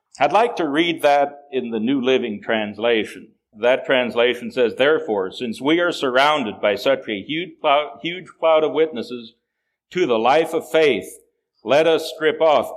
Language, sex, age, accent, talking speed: English, male, 60-79, American, 165 wpm